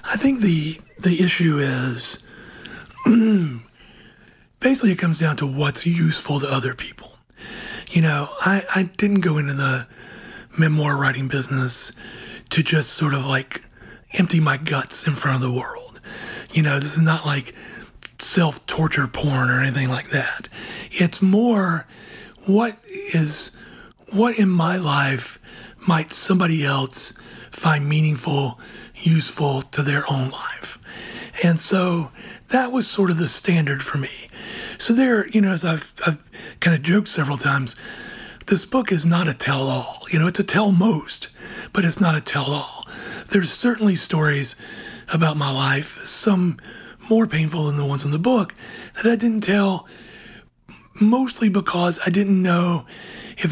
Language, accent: English, American